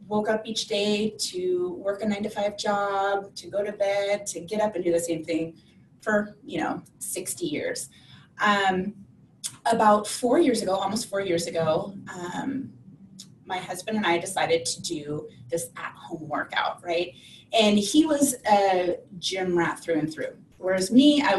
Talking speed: 175 wpm